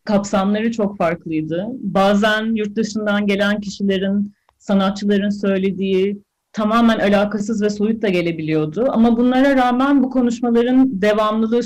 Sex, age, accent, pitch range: female, 40-59, native, 195-235 Hz